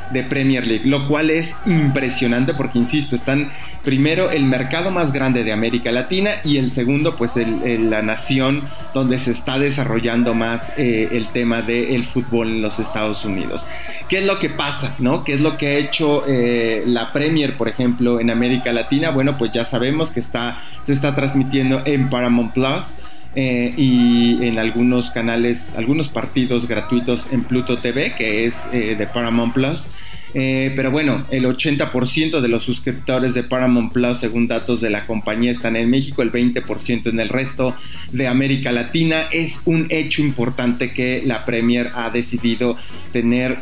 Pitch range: 120-135 Hz